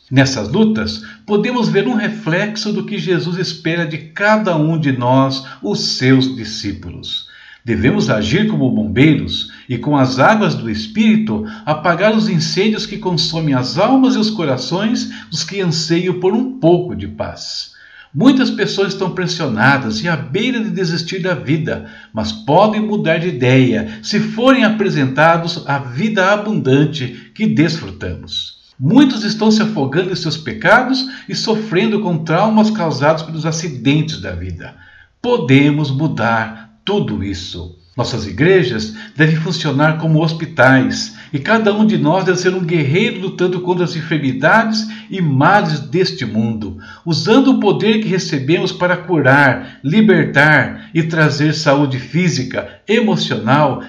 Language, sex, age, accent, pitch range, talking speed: Portuguese, male, 60-79, Brazilian, 135-205 Hz, 140 wpm